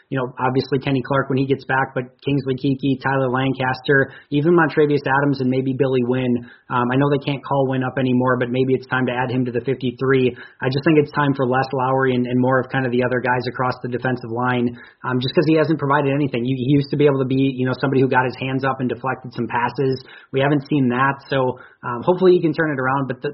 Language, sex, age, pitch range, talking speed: English, male, 30-49, 125-140 Hz, 260 wpm